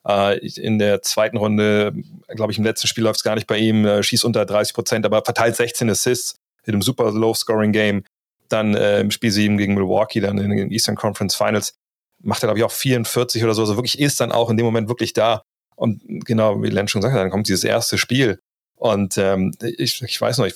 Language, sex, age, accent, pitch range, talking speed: German, male, 30-49, German, 105-120 Hz, 220 wpm